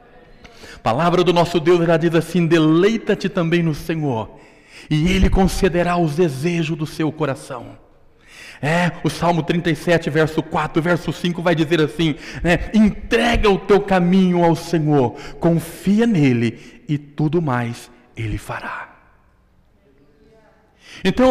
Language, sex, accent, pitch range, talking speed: Portuguese, male, Brazilian, 160-225 Hz, 130 wpm